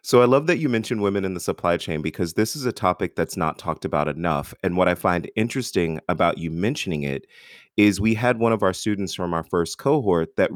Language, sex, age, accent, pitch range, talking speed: English, male, 30-49, American, 85-105 Hz, 240 wpm